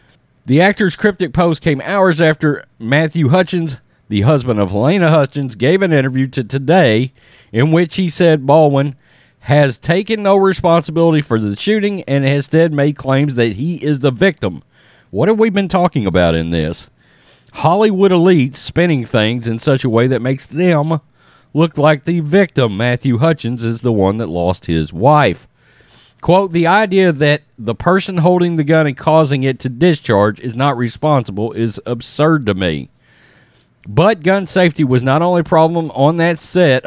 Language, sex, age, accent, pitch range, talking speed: English, male, 40-59, American, 120-165 Hz, 170 wpm